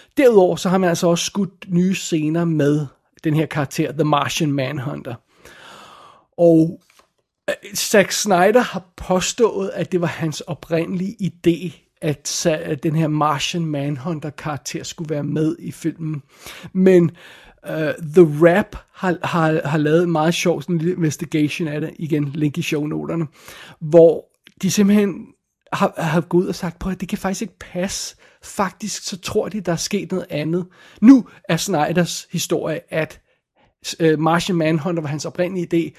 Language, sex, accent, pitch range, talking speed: Danish, male, native, 155-185 Hz, 155 wpm